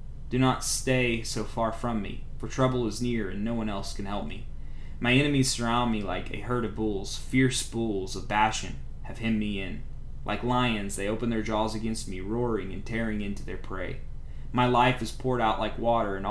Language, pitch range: English, 95-115 Hz